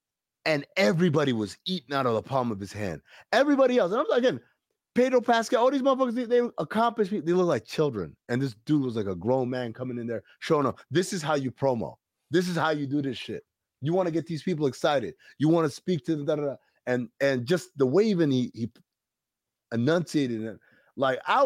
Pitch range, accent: 125-175 Hz, American